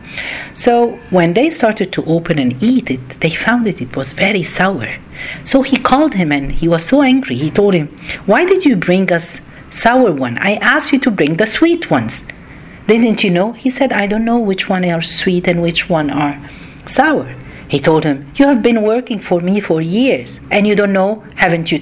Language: Arabic